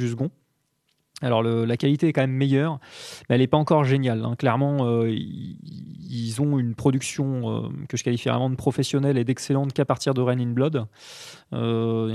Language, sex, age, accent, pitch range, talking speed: English, male, 20-39, French, 115-140 Hz, 190 wpm